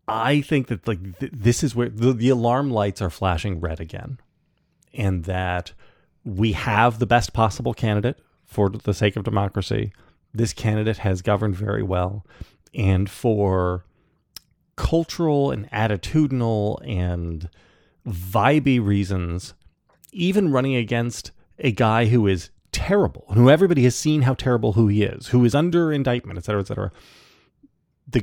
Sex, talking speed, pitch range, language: male, 145 wpm, 95-125 Hz, English